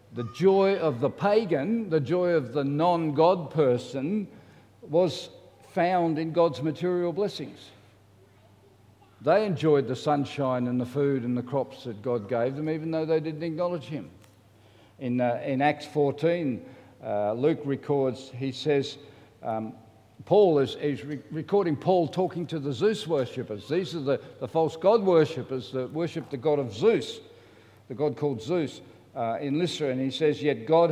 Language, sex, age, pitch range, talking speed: English, male, 60-79, 130-160 Hz, 165 wpm